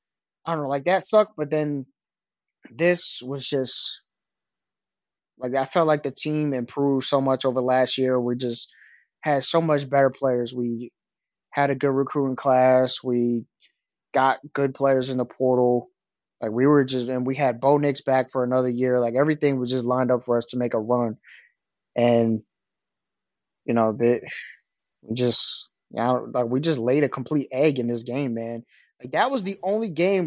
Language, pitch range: English, 125-155 Hz